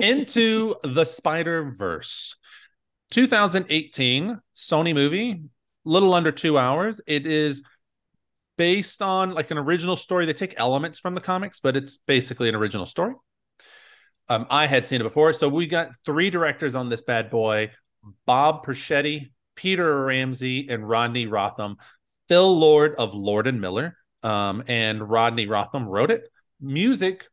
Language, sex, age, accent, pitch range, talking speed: English, male, 30-49, American, 115-160 Hz, 145 wpm